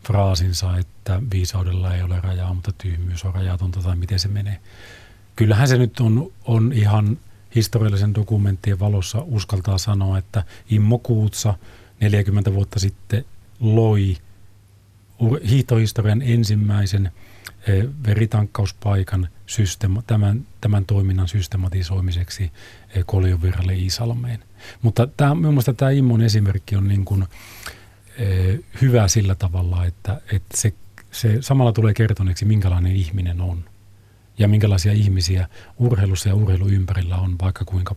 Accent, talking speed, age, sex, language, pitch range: native, 115 wpm, 40-59, male, Finnish, 95-110 Hz